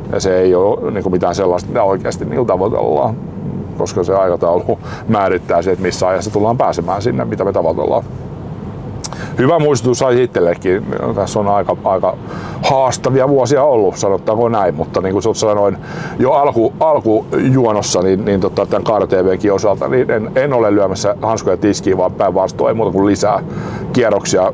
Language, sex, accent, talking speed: Finnish, male, native, 145 wpm